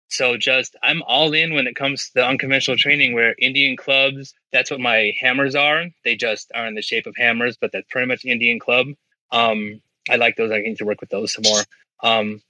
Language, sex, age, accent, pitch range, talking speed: English, male, 20-39, American, 115-135 Hz, 225 wpm